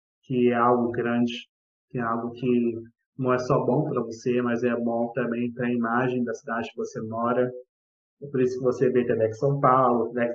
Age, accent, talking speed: 20-39, Brazilian, 210 wpm